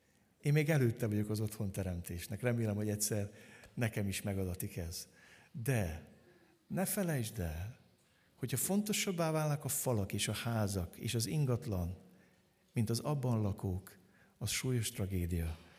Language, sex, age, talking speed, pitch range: Hungarian, male, 60-79, 135 wpm, 105-140 Hz